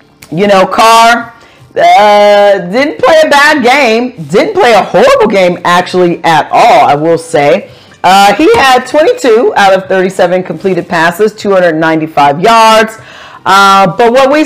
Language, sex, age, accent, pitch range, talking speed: English, female, 40-59, American, 175-265 Hz, 145 wpm